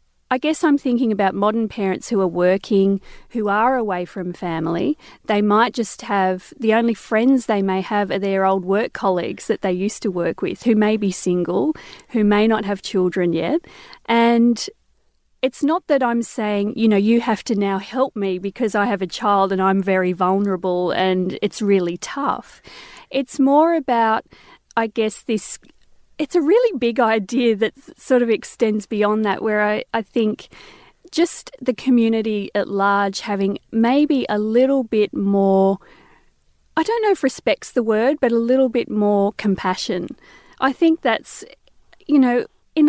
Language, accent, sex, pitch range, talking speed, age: English, Australian, female, 195-255 Hz, 175 wpm, 40-59